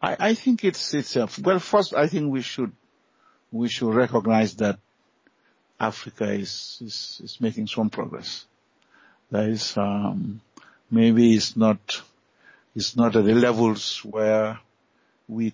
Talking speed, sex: 140 wpm, male